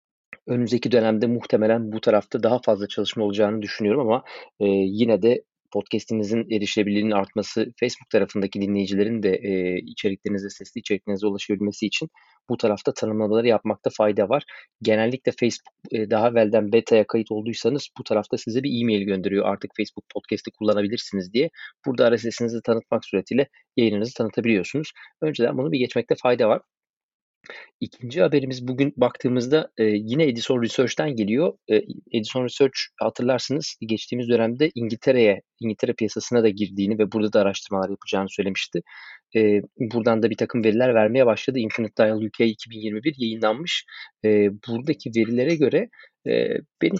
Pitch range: 105-120 Hz